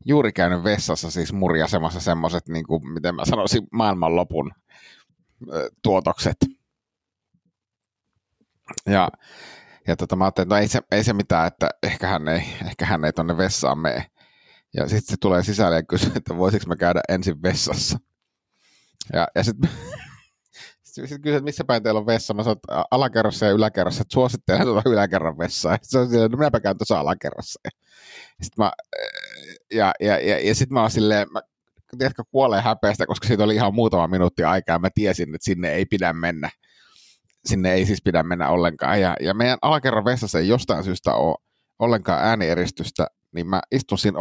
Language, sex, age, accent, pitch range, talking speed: Finnish, male, 30-49, native, 90-115 Hz, 165 wpm